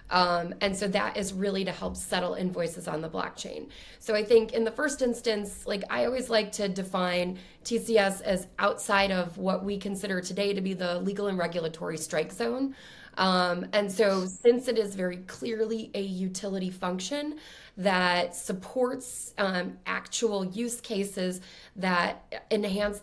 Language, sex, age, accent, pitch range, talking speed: English, female, 20-39, American, 185-225 Hz, 160 wpm